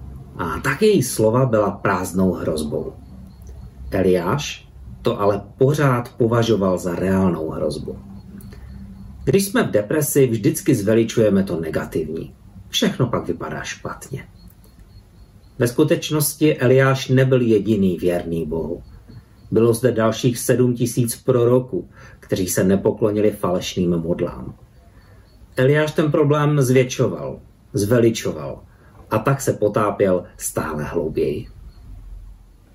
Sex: male